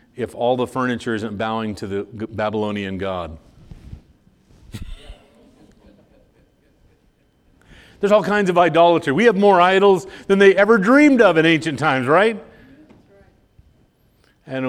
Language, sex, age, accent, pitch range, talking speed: English, male, 40-59, American, 115-155 Hz, 120 wpm